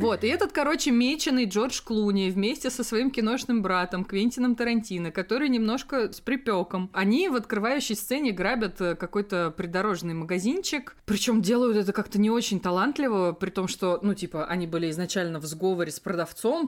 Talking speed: 160 wpm